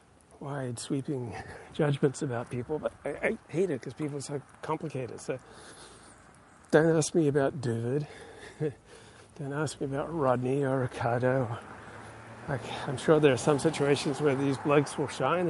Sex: male